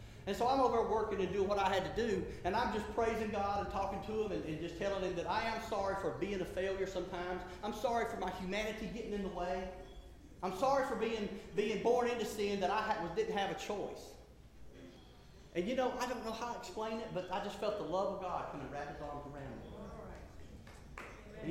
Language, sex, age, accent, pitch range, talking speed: English, male, 30-49, American, 180-235 Hz, 235 wpm